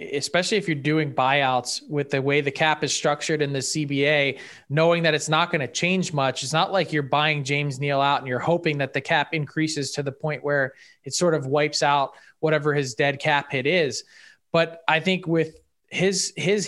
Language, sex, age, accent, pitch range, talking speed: English, male, 20-39, American, 145-170 Hz, 210 wpm